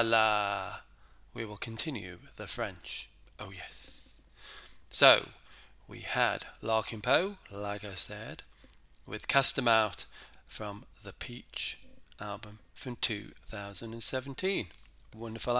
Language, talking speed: English, 110 wpm